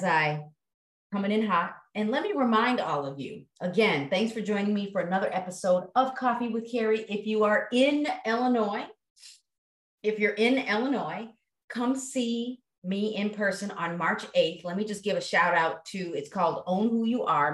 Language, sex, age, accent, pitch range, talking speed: English, female, 30-49, American, 170-220 Hz, 185 wpm